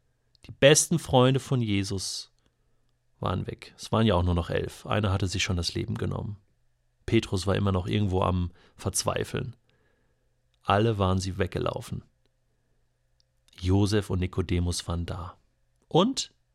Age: 40-59